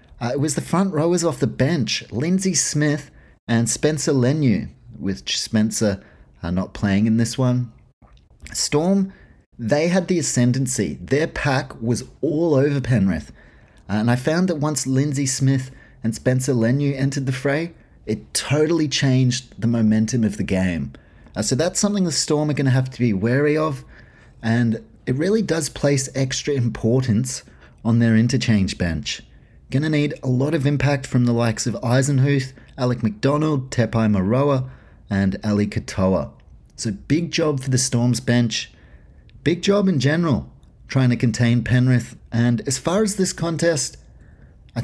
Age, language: 30-49, English